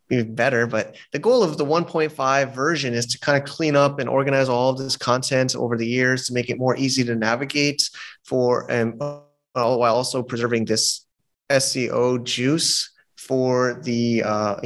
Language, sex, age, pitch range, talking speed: English, male, 30-49, 115-135 Hz, 170 wpm